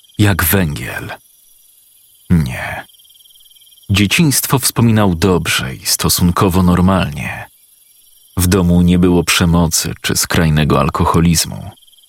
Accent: native